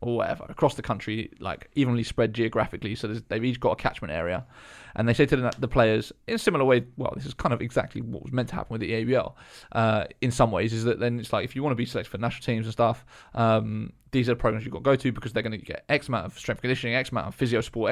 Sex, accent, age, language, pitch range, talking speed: male, British, 20-39, English, 115-130 Hz, 285 wpm